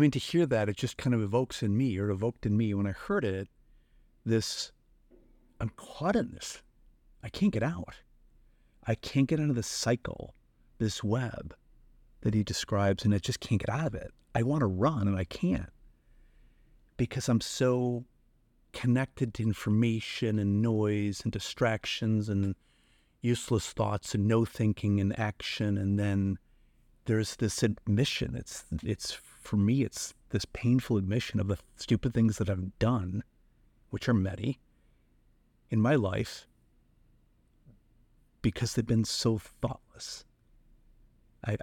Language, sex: English, male